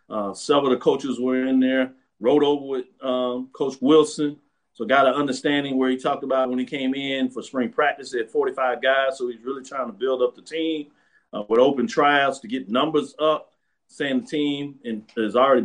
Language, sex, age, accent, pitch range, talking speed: English, male, 40-59, American, 130-155 Hz, 205 wpm